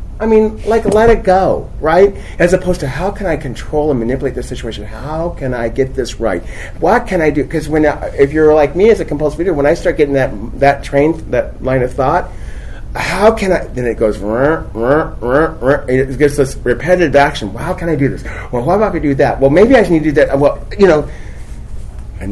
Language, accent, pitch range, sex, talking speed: English, American, 110-150 Hz, male, 230 wpm